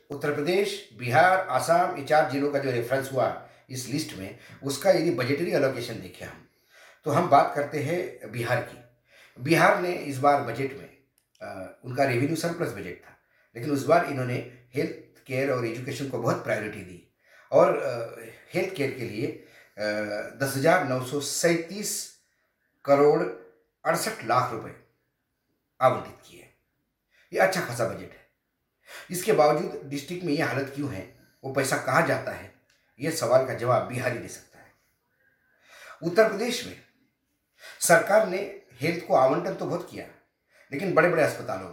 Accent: native